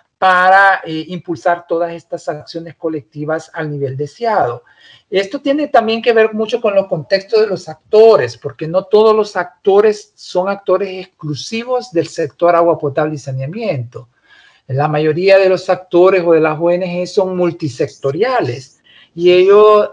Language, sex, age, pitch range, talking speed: English, male, 50-69, 155-195 Hz, 150 wpm